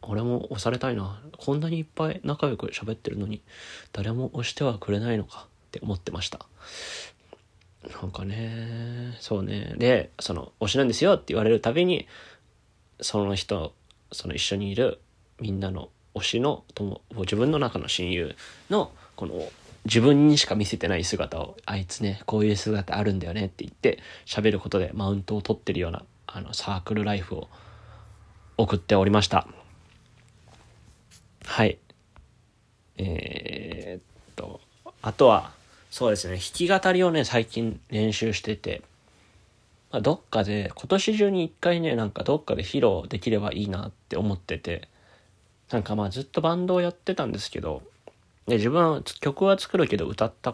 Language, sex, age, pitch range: Japanese, male, 20-39, 100-120 Hz